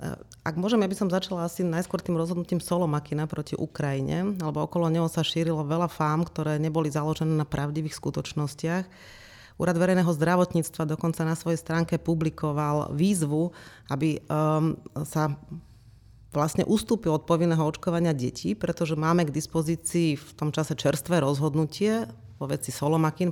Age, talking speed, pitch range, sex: 30-49, 140 wpm, 145-165 Hz, female